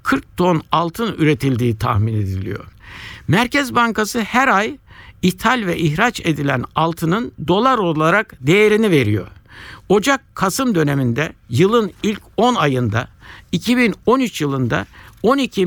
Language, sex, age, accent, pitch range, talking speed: Turkish, male, 60-79, native, 135-200 Hz, 110 wpm